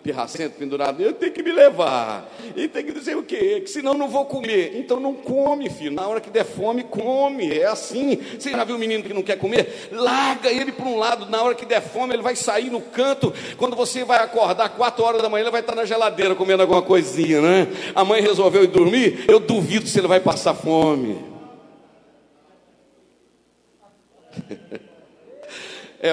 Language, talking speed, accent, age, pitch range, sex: Portuguese, 195 wpm, Brazilian, 60-79, 160-215 Hz, male